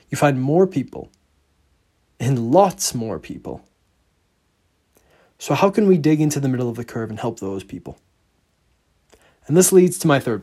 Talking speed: 165 wpm